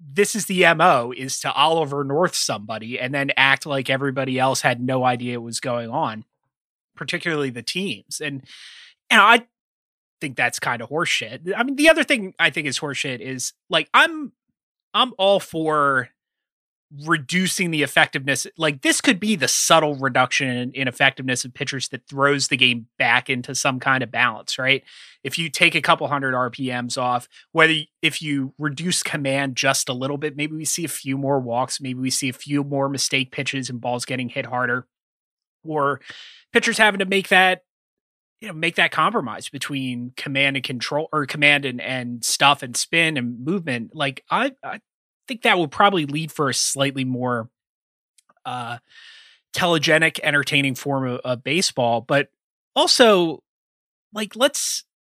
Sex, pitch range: male, 130-170 Hz